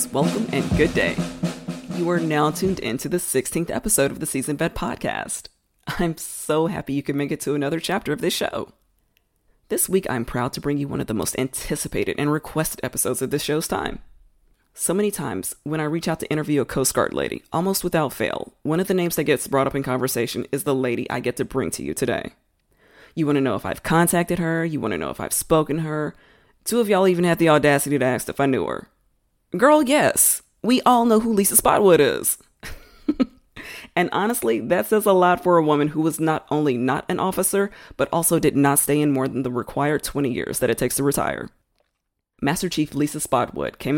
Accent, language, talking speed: American, English, 220 wpm